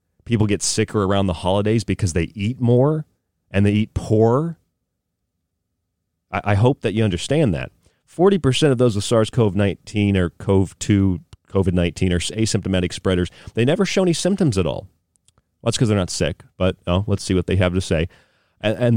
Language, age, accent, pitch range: English, 40-59, American, 90-115 Hz